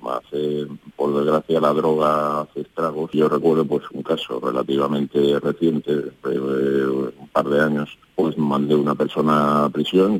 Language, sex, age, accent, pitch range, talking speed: Spanish, male, 40-59, Spanish, 75-85 Hz, 135 wpm